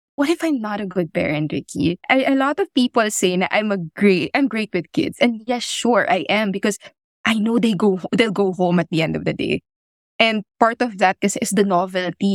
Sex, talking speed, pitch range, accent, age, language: female, 230 wpm, 180-230 Hz, Filipino, 20-39, English